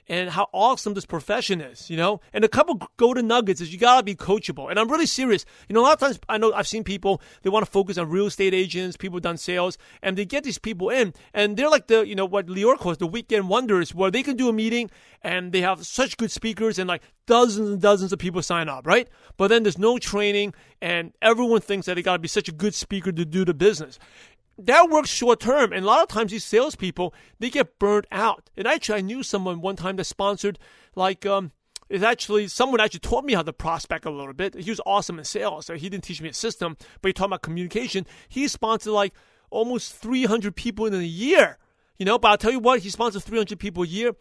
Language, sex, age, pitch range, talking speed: English, male, 30-49, 180-225 Hz, 245 wpm